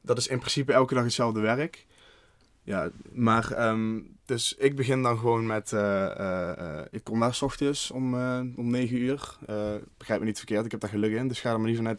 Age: 20-39